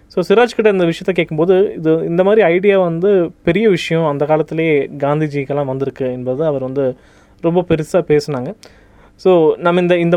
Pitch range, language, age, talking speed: 145-180 Hz, Tamil, 20-39, 155 wpm